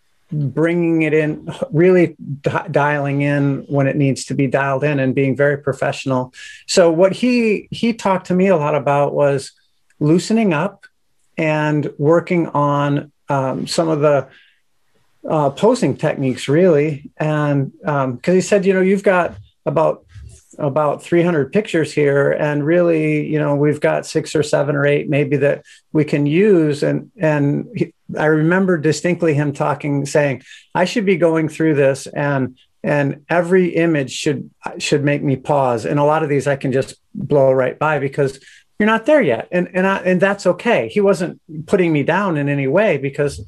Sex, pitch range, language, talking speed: male, 140-175 Hz, English, 175 wpm